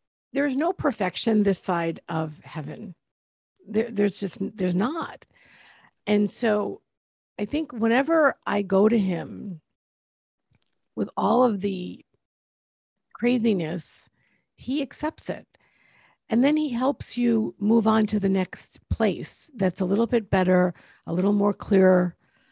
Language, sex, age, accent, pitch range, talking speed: English, female, 50-69, American, 180-245 Hz, 130 wpm